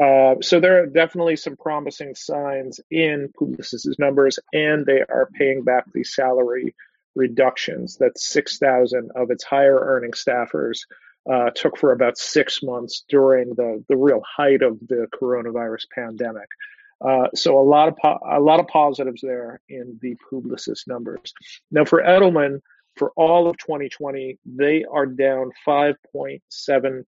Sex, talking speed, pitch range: male, 150 wpm, 130-150 Hz